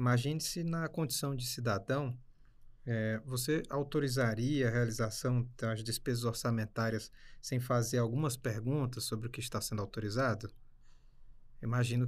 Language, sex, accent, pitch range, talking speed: Portuguese, male, Brazilian, 120-145 Hz, 120 wpm